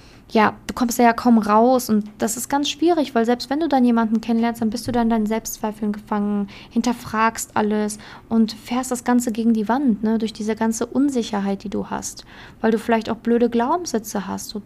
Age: 20-39